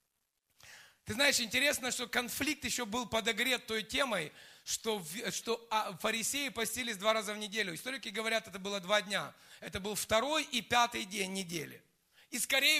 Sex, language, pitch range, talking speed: male, Russian, 225-265 Hz, 155 wpm